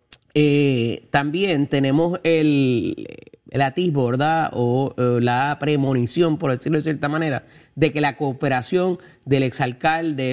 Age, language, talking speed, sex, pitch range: 30-49, Spanish, 130 wpm, male, 130-165 Hz